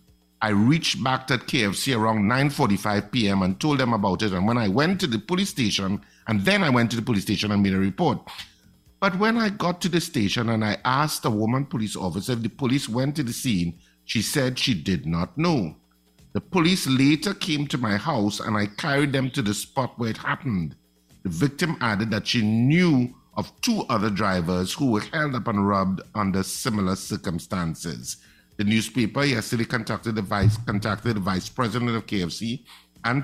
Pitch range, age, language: 95-130 Hz, 50-69, English